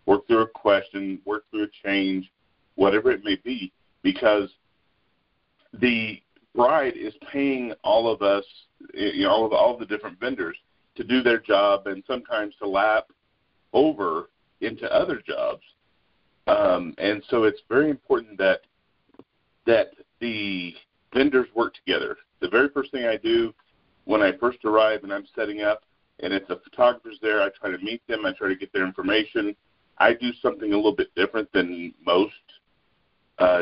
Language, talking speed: English, 165 wpm